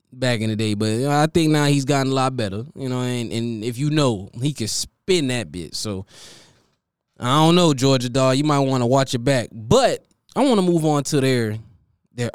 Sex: male